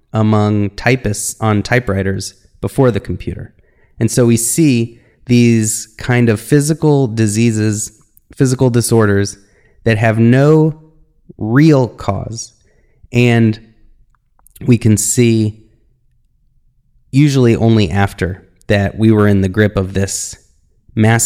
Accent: American